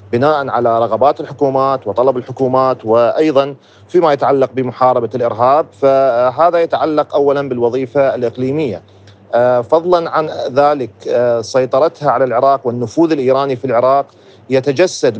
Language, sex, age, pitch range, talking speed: Arabic, male, 40-59, 120-145 Hz, 105 wpm